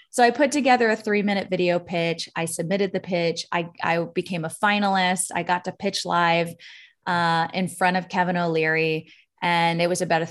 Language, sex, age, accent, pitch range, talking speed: English, female, 30-49, American, 175-210 Hz, 190 wpm